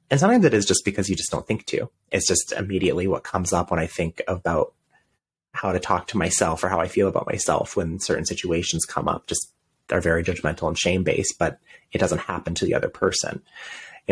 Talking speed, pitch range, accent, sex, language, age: 225 wpm, 90-120 Hz, American, male, English, 30-49